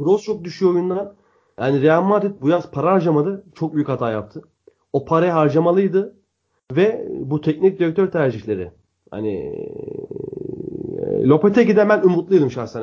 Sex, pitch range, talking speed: male, 125-185 Hz, 130 wpm